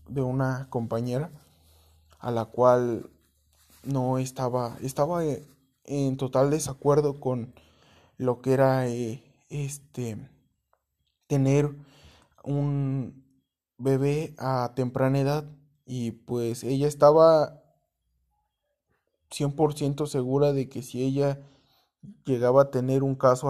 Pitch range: 125-140 Hz